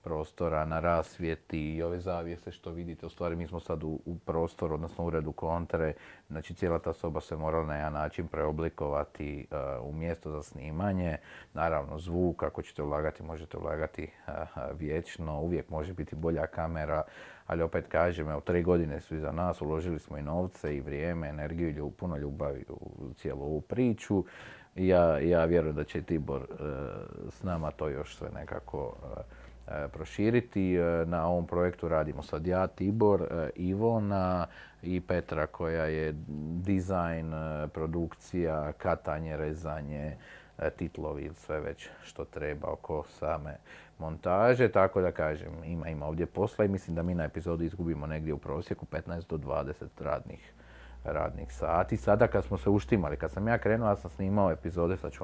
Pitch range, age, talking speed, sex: 75-90 Hz, 40-59, 160 wpm, male